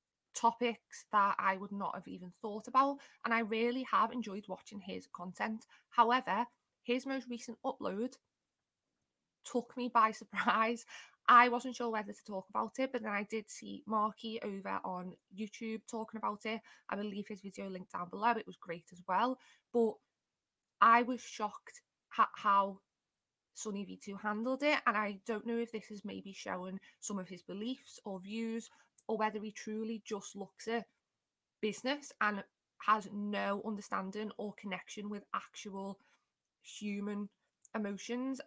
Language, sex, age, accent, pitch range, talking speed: English, female, 20-39, British, 200-240 Hz, 160 wpm